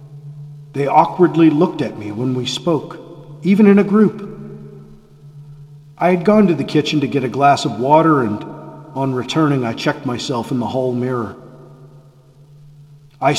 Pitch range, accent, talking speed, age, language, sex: 135-150 Hz, American, 155 wpm, 40-59, English, male